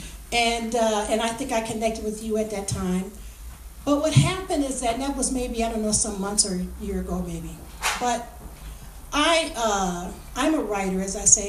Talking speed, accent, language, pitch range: 205 wpm, American, English, 175-225 Hz